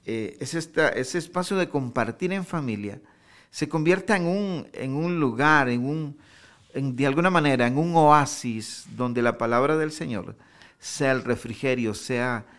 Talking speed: 160 wpm